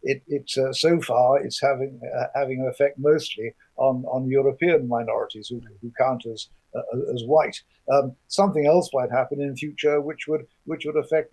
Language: English